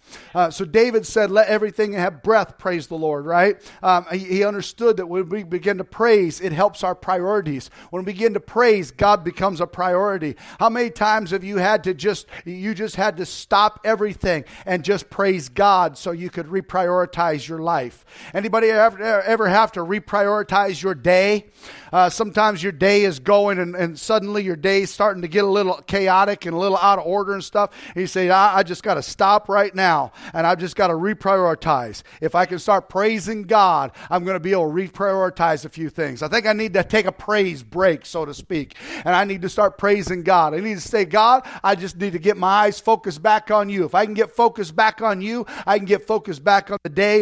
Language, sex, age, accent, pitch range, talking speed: English, male, 50-69, American, 180-210 Hz, 225 wpm